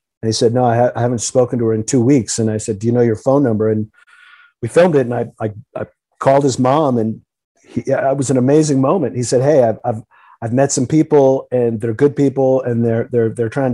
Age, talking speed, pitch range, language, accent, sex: 40-59, 250 wpm, 115-135 Hz, English, American, male